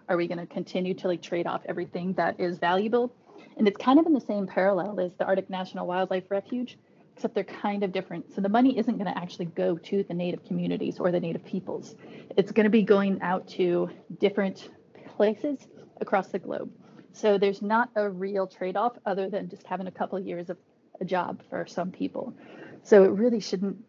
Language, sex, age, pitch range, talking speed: English, female, 30-49, 185-225 Hz, 210 wpm